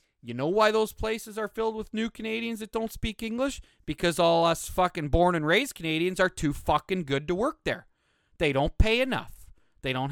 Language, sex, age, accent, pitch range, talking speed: English, male, 40-59, American, 125-195 Hz, 210 wpm